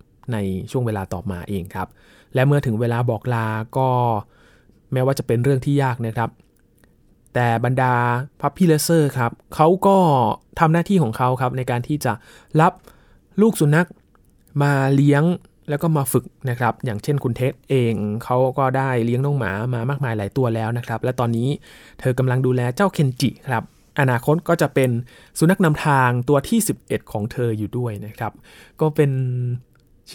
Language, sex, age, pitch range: Thai, male, 20-39, 115-145 Hz